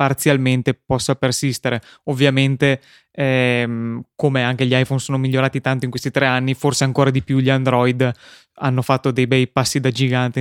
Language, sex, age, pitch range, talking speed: Italian, male, 20-39, 130-145 Hz, 165 wpm